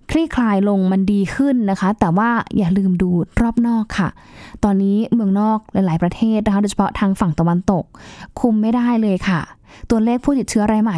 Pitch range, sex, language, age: 195-240 Hz, female, Thai, 10-29